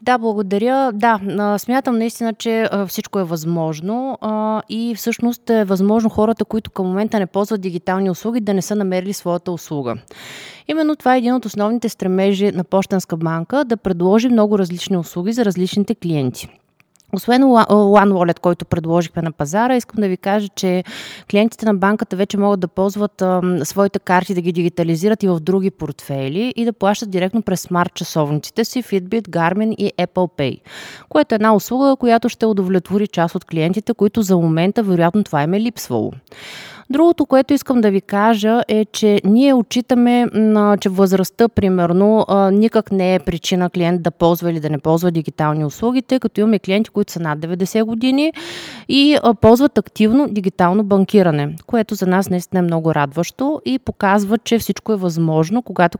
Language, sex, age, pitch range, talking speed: Bulgarian, female, 20-39, 180-225 Hz, 165 wpm